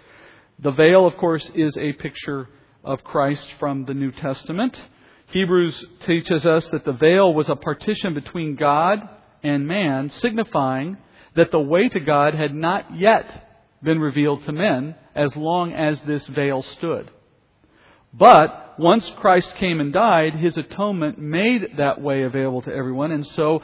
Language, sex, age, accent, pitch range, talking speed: English, male, 50-69, American, 145-185 Hz, 155 wpm